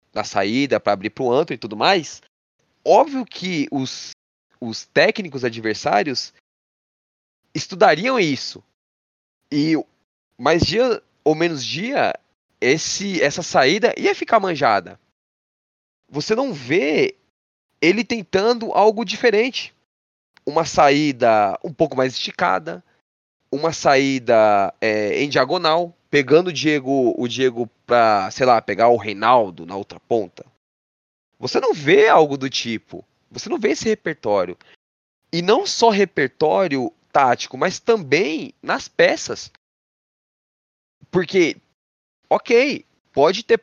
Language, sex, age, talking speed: Portuguese, male, 20-39, 115 wpm